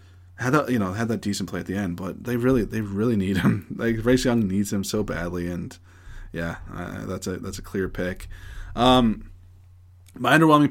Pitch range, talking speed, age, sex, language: 95-140 Hz, 205 wpm, 20-39, male, English